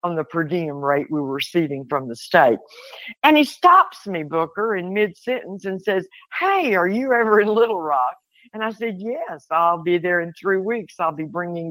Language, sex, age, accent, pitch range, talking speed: English, female, 60-79, American, 170-220 Hz, 210 wpm